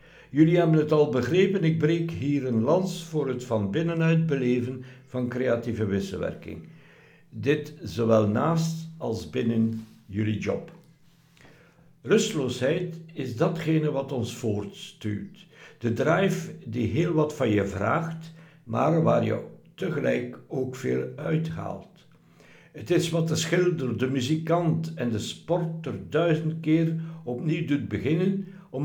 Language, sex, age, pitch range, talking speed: Dutch, male, 60-79, 120-165 Hz, 130 wpm